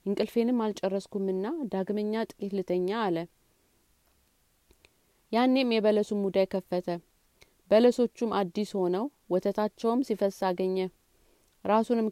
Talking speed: 80 wpm